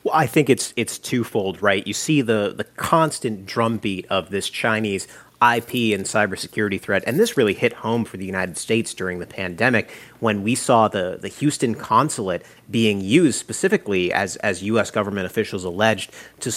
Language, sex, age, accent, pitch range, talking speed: English, male, 30-49, American, 105-130 Hz, 175 wpm